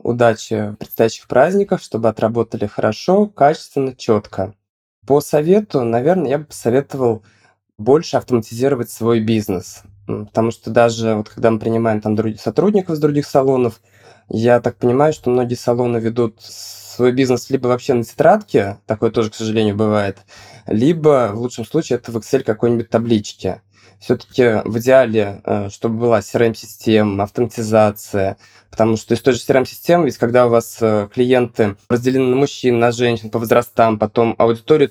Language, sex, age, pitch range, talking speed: Russian, male, 20-39, 110-130 Hz, 140 wpm